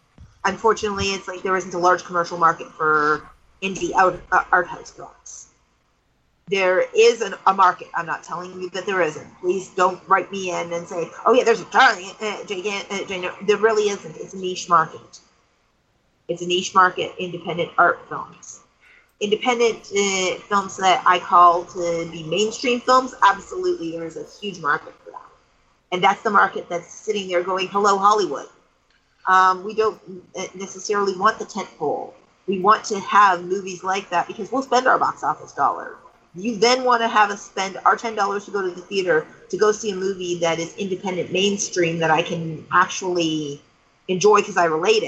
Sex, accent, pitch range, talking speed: female, American, 175-210 Hz, 180 wpm